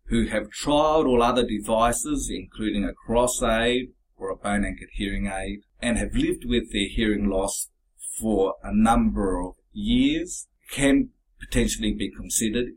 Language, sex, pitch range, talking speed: English, male, 100-145 Hz, 150 wpm